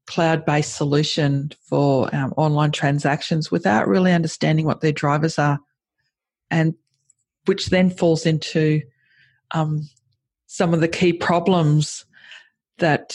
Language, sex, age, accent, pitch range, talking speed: English, female, 40-59, Australian, 150-170 Hz, 115 wpm